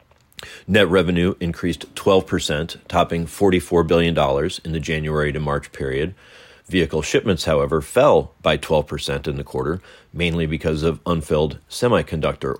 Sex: male